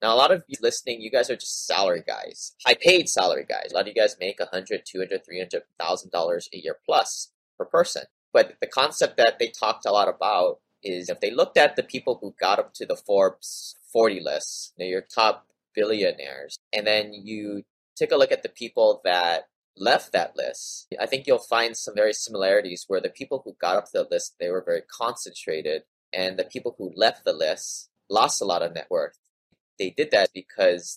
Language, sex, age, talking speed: English, male, 30-49, 210 wpm